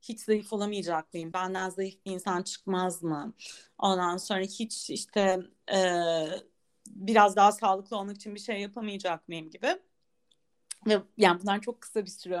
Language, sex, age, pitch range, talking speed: Turkish, female, 30-49, 190-250 Hz, 155 wpm